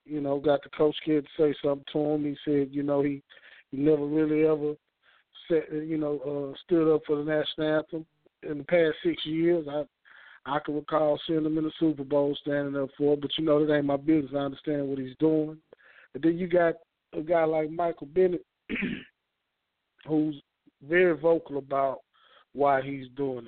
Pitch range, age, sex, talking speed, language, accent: 145-175 Hz, 40-59, male, 195 wpm, English, American